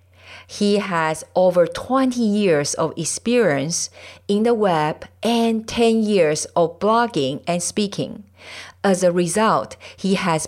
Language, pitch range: English, 155-225 Hz